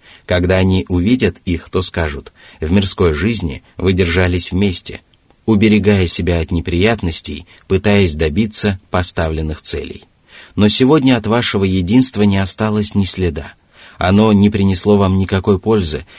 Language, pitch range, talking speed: Russian, 85-105 Hz, 130 wpm